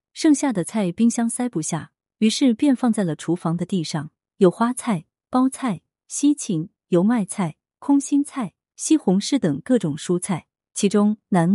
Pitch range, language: 165-230 Hz, Chinese